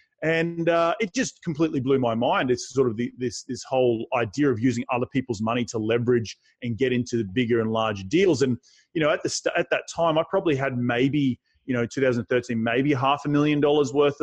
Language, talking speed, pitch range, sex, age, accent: English, 235 wpm, 120-145 Hz, male, 30-49, Australian